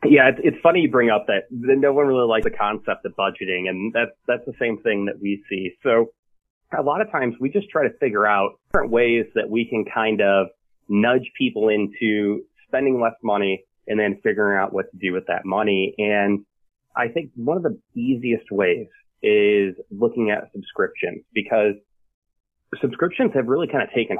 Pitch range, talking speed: 100-130 Hz, 190 wpm